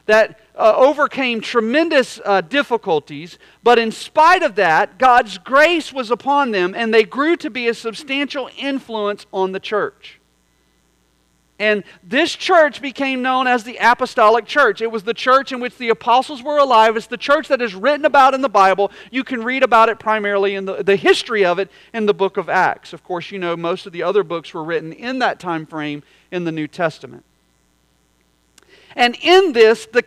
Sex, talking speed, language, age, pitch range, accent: male, 190 wpm, English, 40-59, 190-260 Hz, American